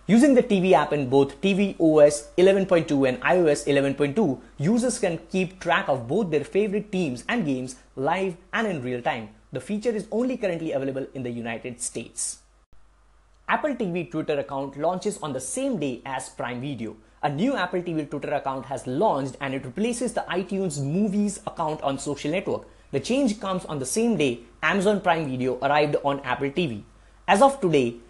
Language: English